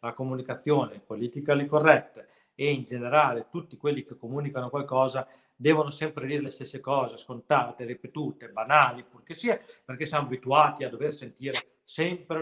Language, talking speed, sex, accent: Italian, 145 wpm, male, native